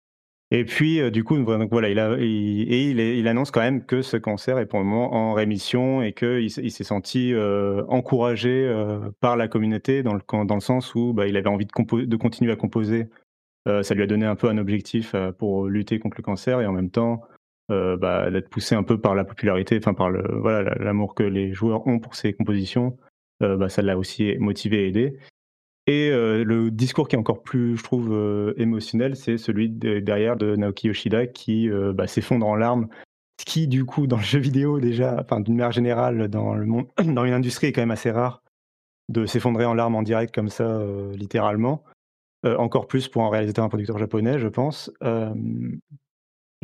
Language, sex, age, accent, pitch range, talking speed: French, male, 30-49, French, 105-120 Hz, 215 wpm